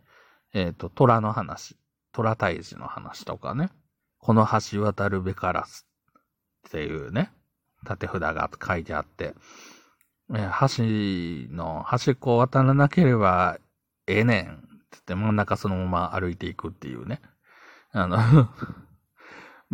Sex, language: male, Japanese